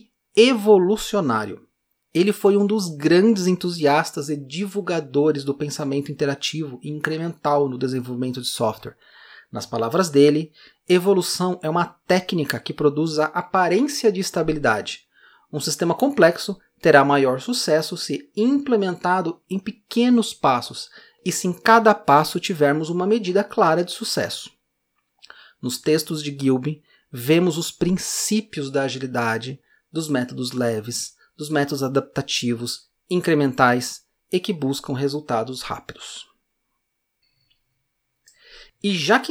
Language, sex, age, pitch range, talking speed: Portuguese, male, 30-49, 145-215 Hz, 120 wpm